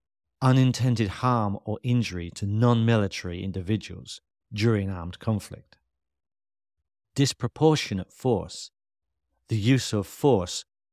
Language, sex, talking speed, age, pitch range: English, male, 90 wpm, 50-69, 95-120 Hz